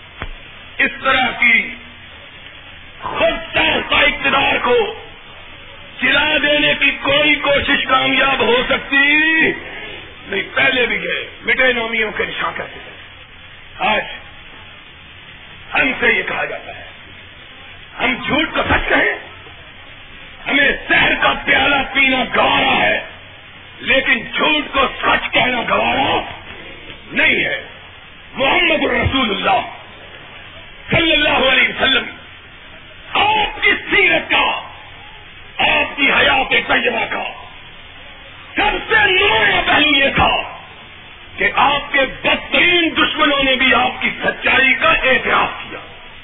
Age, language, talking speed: 50-69, Urdu, 110 wpm